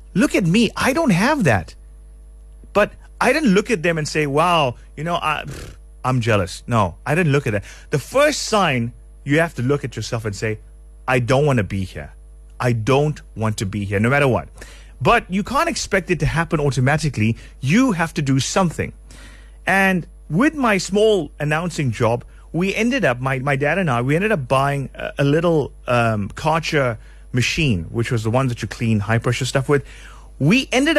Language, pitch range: English, 120-185 Hz